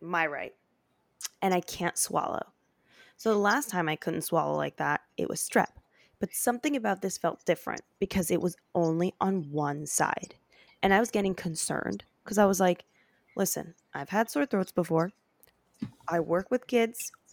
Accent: American